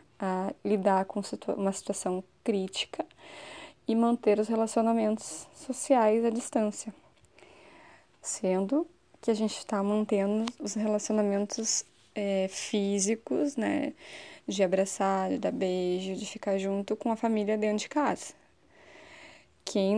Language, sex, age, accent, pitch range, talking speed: Portuguese, female, 10-29, Brazilian, 195-230 Hz, 115 wpm